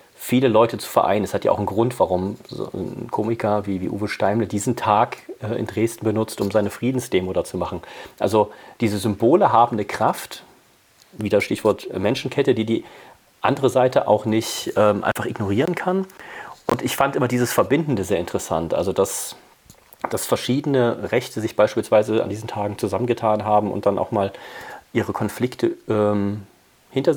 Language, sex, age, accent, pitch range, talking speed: German, male, 40-59, German, 105-125 Hz, 170 wpm